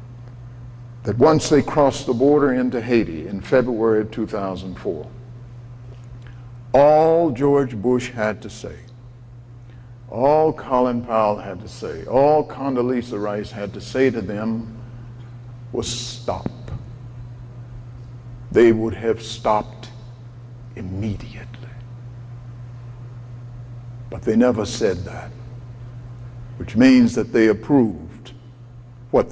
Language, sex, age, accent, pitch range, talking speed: English, male, 60-79, American, 120-130 Hz, 100 wpm